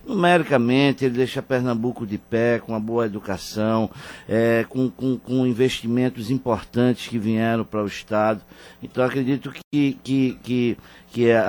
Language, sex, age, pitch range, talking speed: Portuguese, male, 60-79, 120-155 Hz, 125 wpm